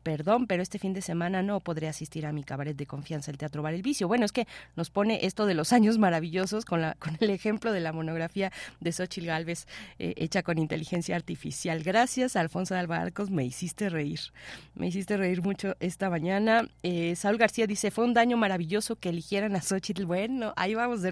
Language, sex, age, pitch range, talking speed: Spanish, female, 30-49, 165-205 Hz, 215 wpm